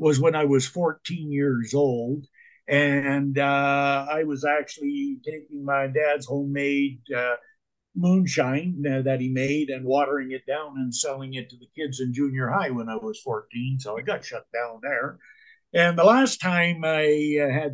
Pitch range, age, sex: 130-160 Hz, 60-79, male